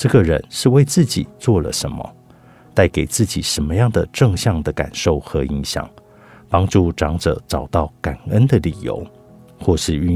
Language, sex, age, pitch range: Chinese, male, 50-69, 75-105 Hz